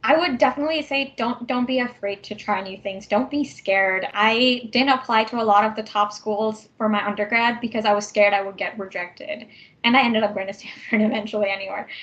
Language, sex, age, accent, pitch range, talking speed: English, female, 10-29, American, 205-245 Hz, 225 wpm